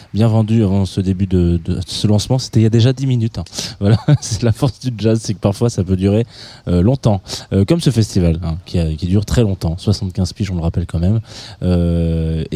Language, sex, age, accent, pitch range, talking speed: French, male, 20-39, French, 95-120 Hz, 240 wpm